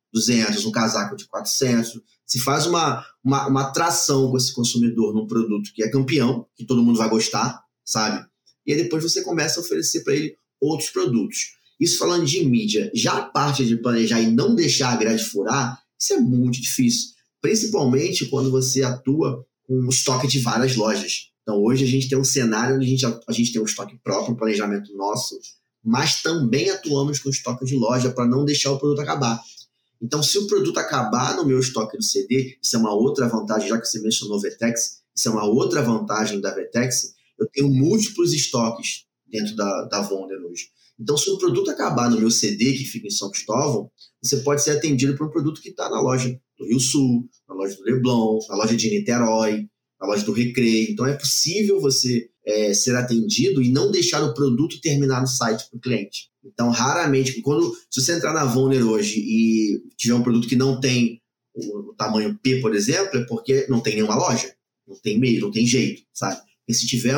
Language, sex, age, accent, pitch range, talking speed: Portuguese, male, 20-39, Brazilian, 115-135 Hz, 205 wpm